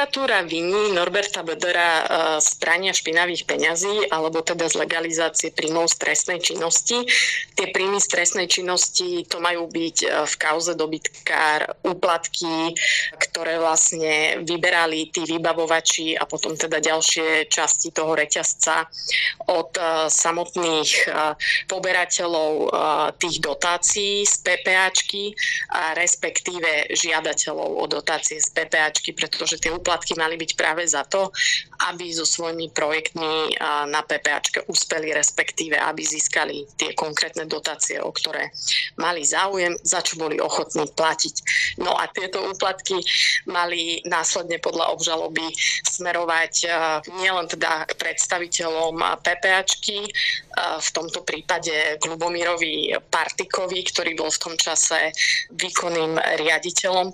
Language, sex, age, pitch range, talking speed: Slovak, female, 20-39, 160-185 Hz, 110 wpm